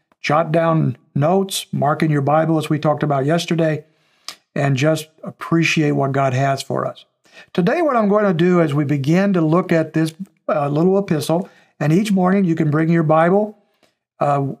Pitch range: 150-190 Hz